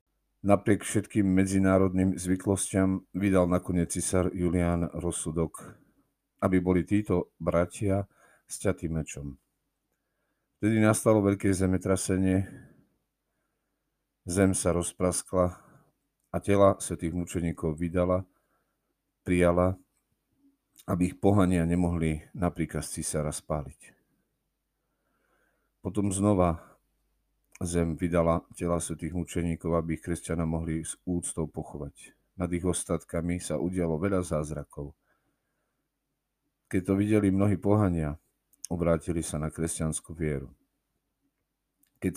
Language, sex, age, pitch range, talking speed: Slovak, male, 50-69, 80-95 Hz, 95 wpm